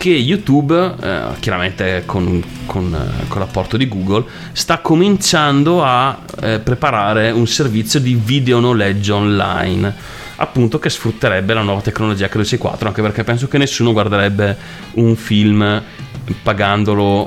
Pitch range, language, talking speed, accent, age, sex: 100-115 Hz, Italian, 130 wpm, native, 30-49, male